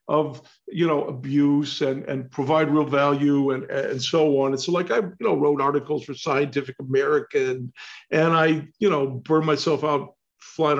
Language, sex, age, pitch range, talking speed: English, male, 50-69, 140-180 Hz, 185 wpm